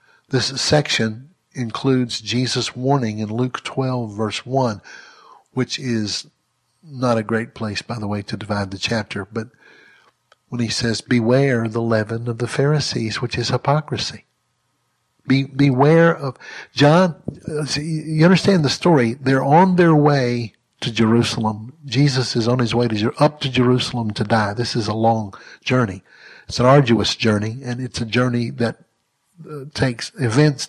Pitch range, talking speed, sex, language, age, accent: 115-145 Hz, 155 wpm, male, English, 60-79, American